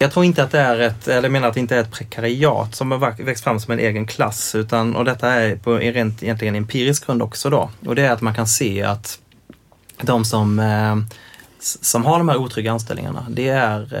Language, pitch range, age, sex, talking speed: Swedish, 110-130 Hz, 20-39, male, 225 wpm